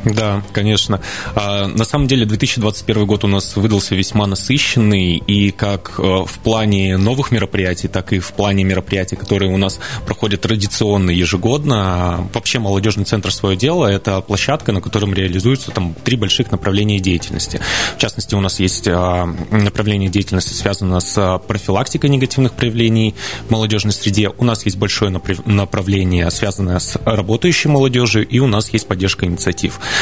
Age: 20-39